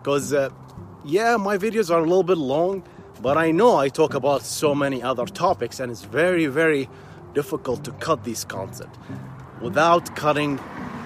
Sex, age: male, 30-49